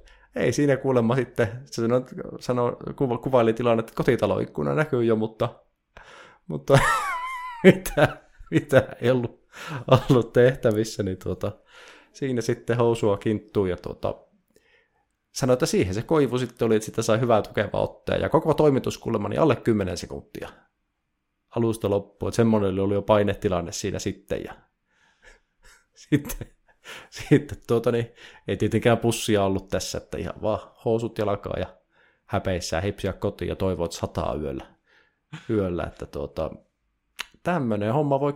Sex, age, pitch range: male, 20-39, 100-130 Hz